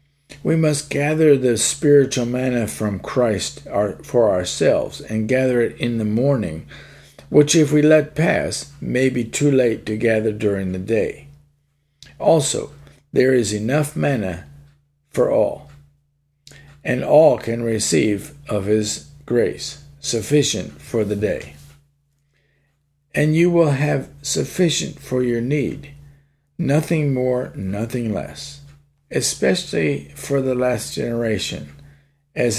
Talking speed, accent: 120 wpm, American